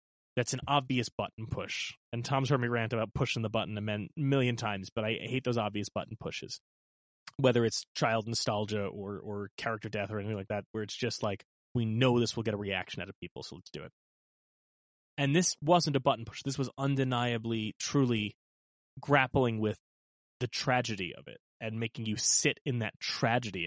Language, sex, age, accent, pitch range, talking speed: English, male, 20-39, American, 105-135 Hz, 195 wpm